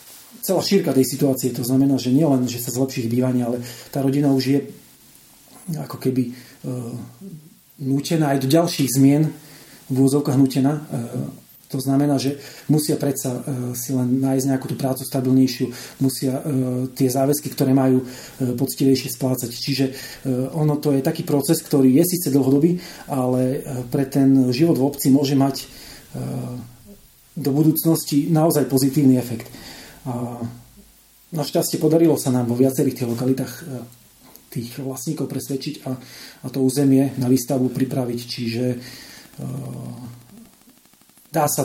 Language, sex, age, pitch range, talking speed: Slovak, male, 40-59, 125-145 Hz, 145 wpm